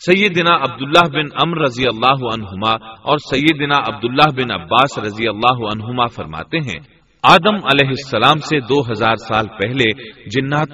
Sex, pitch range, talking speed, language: male, 120-155 Hz, 145 wpm, Urdu